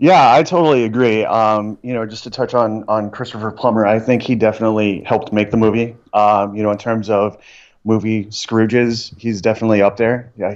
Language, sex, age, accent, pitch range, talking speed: English, male, 30-49, American, 100-115 Hz, 200 wpm